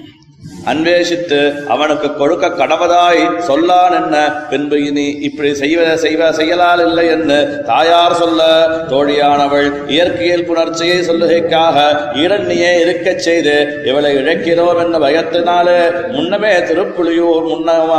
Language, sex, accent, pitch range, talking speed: Tamil, male, native, 150-175 Hz, 95 wpm